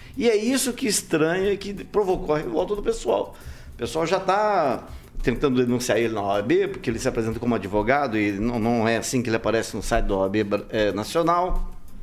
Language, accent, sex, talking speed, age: Portuguese, Brazilian, male, 195 wpm, 50-69